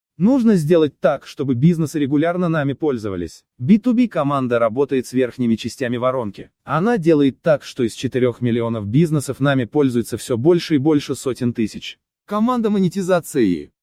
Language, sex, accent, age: Russian, male, native, 20-39